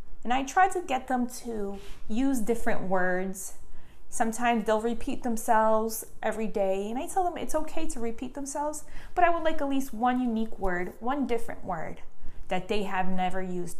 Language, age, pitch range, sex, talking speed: English, 20-39, 195-260 Hz, female, 185 wpm